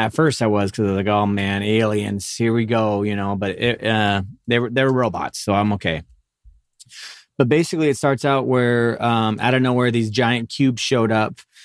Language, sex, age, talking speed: English, male, 20-39, 220 wpm